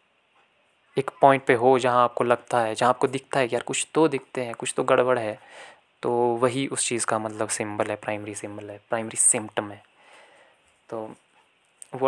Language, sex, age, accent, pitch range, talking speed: Hindi, male, 20-39, native, 110-135 Hz, 185 wpm